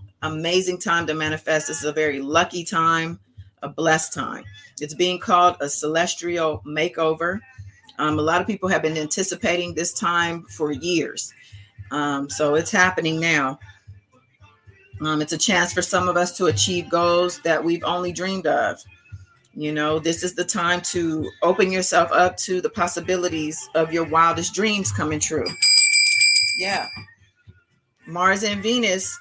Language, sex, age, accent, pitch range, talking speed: English, female, 40-59, American, 150-185 Hz, 155 wpm